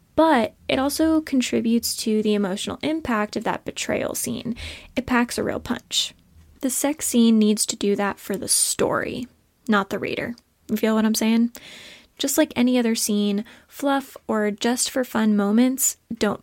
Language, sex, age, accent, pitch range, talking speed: English, female, 20-39, American, 210-280 Hz, 165 wpm